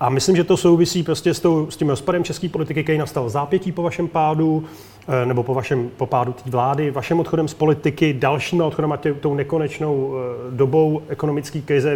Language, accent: Czech, native